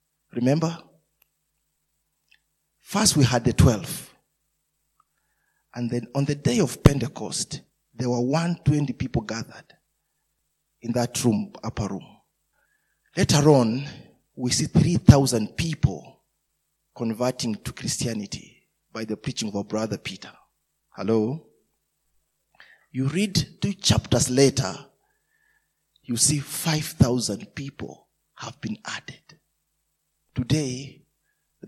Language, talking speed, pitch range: English, 105 wpm, 120-155 Hz